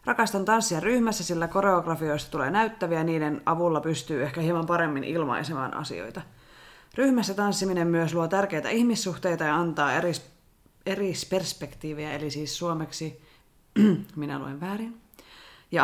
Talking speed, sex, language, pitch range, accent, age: 125 wpm, female, Finnish, 150-195 Hz, native, 30-49